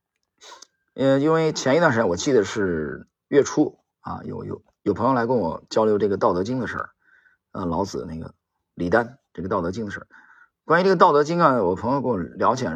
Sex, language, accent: male, Chinese, native